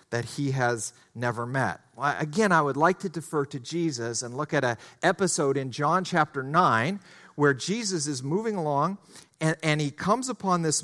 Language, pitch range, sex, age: English, 145-185 Hz, male, 40-59